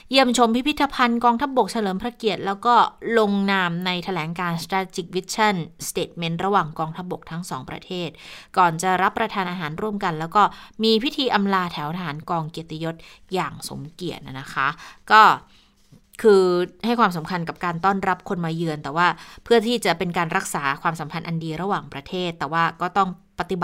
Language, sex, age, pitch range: Thai, female, 20-39, 165-210 Hz